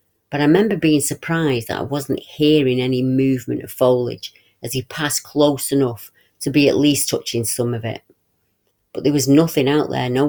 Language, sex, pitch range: English, female, 115-145 Hz